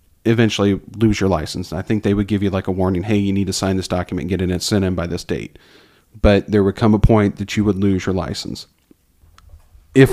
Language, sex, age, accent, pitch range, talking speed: English, male, 40-59, American, 100-115 Hz, 245 wpm